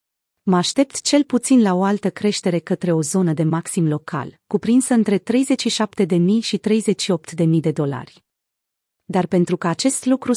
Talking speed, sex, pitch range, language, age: 150 wpm, female, 175-220 Hz, Romanian, 30-49